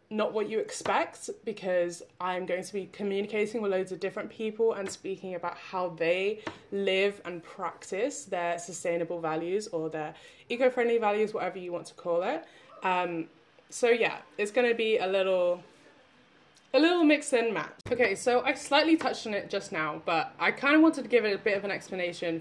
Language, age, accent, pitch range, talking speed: English, 20-39, British, 170-220 Hz, 195 wpm